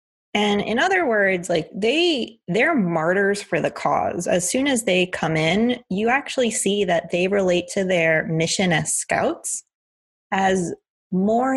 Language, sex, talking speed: English, female, 155 wpm